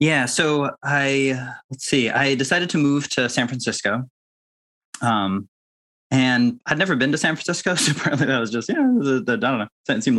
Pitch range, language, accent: 105-140 Hz, English, American